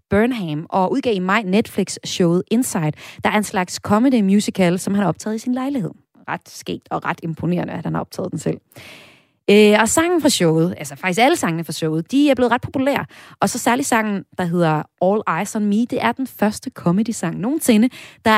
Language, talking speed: Danish, 210 wpm